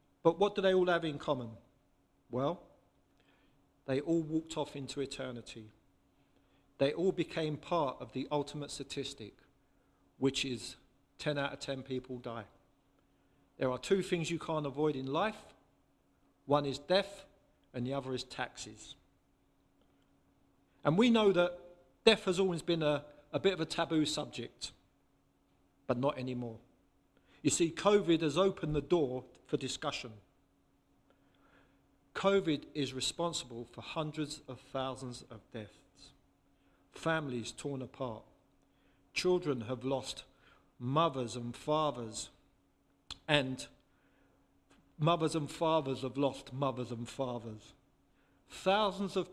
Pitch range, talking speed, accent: 130-165 Hz, 125 wpm, British